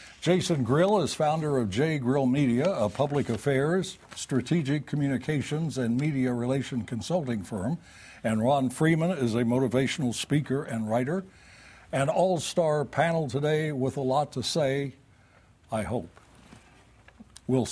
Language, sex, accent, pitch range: English, male, American, 120-155 Hz